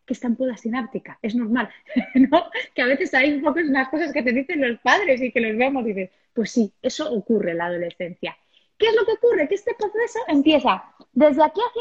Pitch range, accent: 235-315 Hz, Spanish